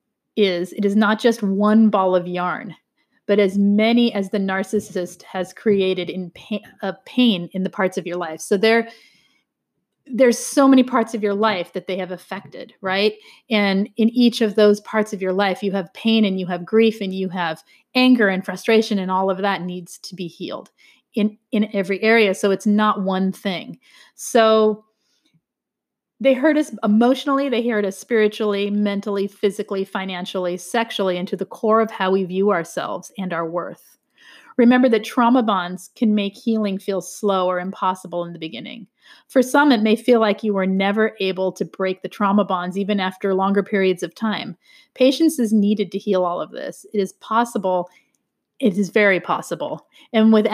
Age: 30-49